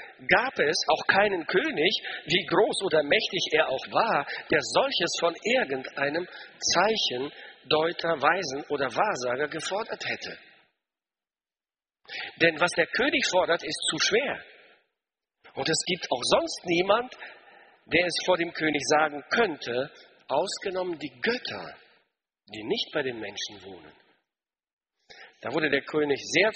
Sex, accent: male, German